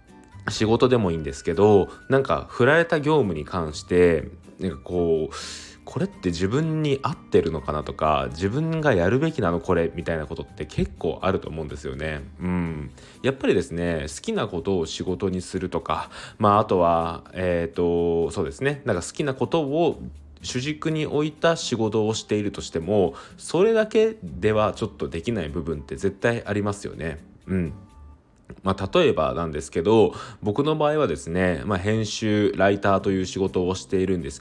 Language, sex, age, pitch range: Japanese, male, 20-39, 85-115 Hz